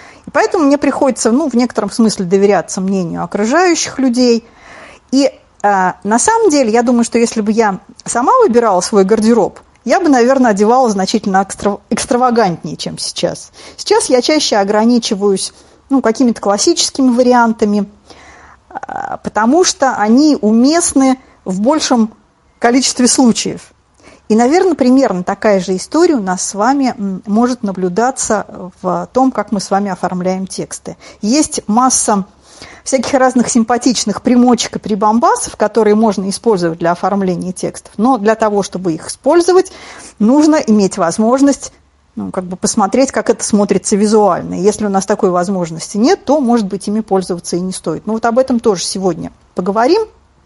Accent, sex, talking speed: native, female, 145 wpm